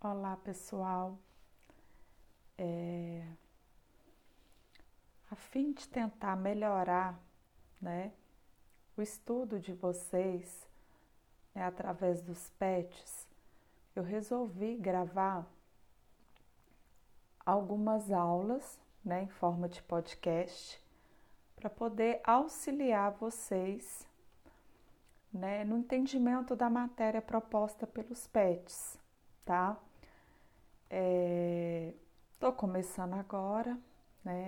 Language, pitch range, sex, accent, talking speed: Portuguese, 180-220 Hz, female, Brazilian, 80 wpm